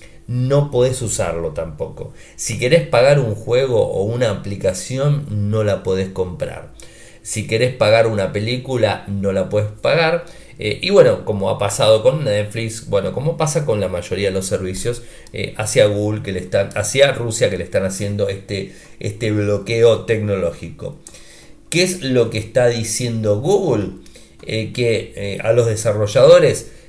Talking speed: 160 wpm